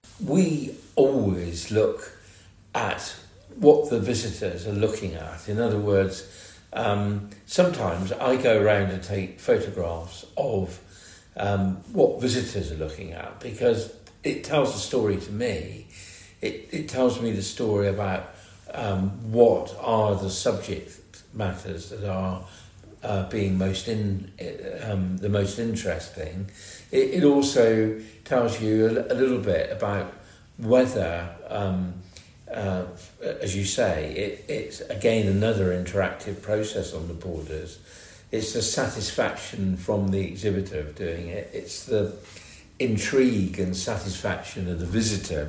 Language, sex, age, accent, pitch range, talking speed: English, male, 50-69, British, 95-110 Hz, 130 wpm